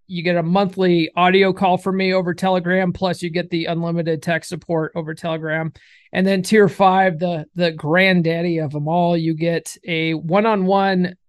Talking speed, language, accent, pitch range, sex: 175 wpm, English, American, 165-205 Hz, male